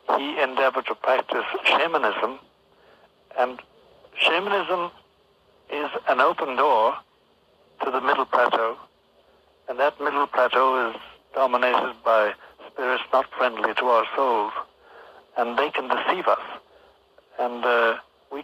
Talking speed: 115 wpm